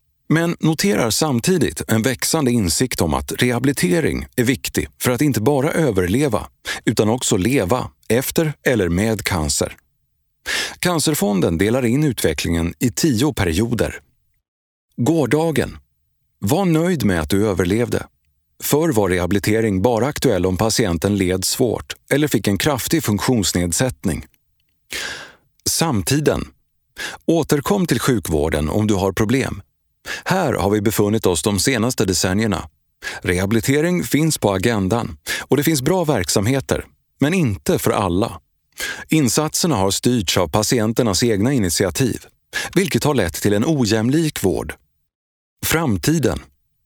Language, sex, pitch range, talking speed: Swedish, male, 90-135 Hz, 120 wpm